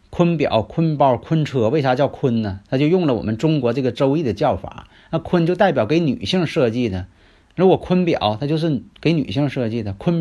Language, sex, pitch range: Chinese, male, 95-155 Hz